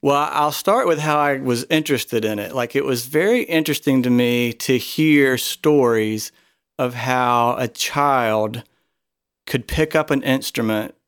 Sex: male